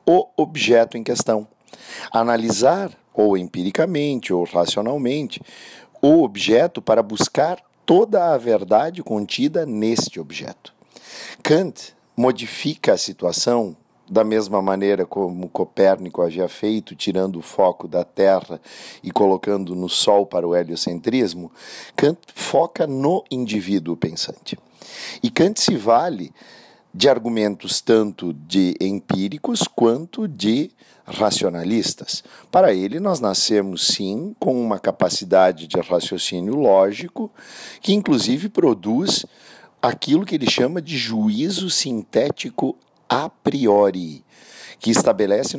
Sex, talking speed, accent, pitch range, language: male, 110 wpm, Brazilian, 95-115 Hz, Portuguese